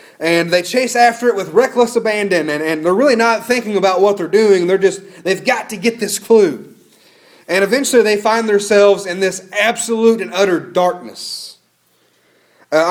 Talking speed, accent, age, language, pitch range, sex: 175 wpm, American, 30-49, English, 180-220 Hz, male